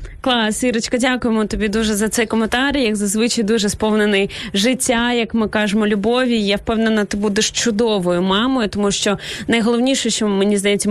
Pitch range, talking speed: 200-235 Hz, 160 wpm